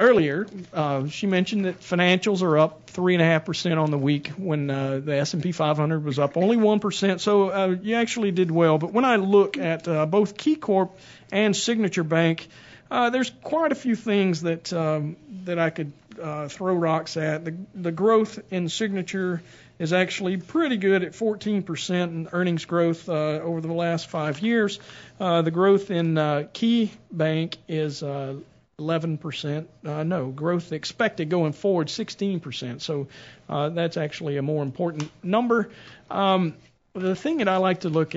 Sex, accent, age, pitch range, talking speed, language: male, American, 50-69, 155-190 Hz, 170 wpm, English